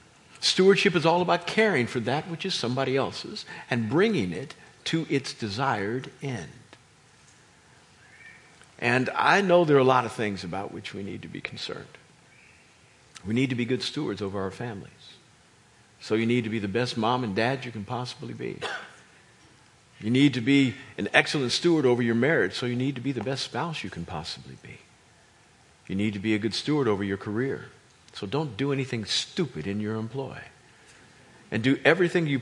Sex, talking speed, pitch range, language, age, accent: male, 185 wpm, 115-150 Hz, English, 50-69, American